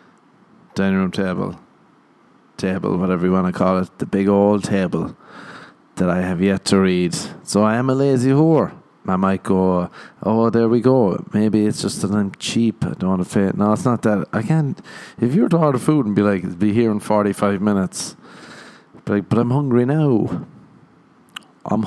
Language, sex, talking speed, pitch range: English, male, 200 wpm, 95-120 Hz